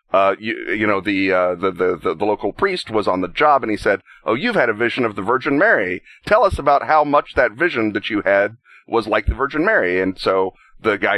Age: 40-59